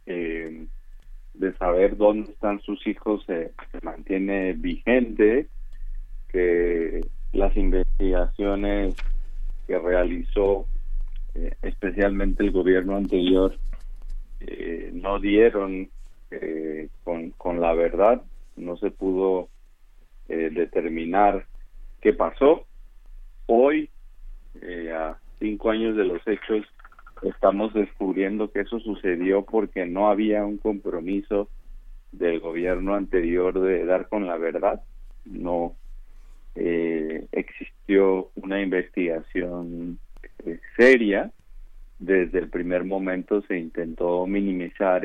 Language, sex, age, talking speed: Spanish, male, 40-59, 100 wpm